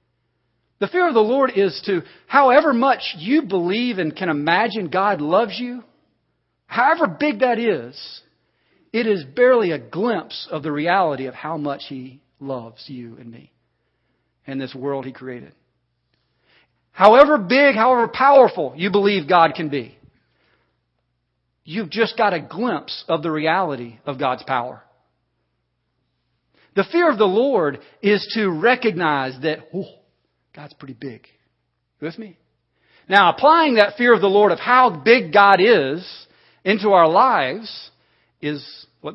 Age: 40-59